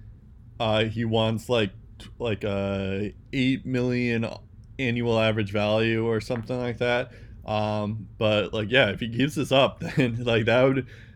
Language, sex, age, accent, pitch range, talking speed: English, male, 20-39, American, 105-120 Hz, 150 wpm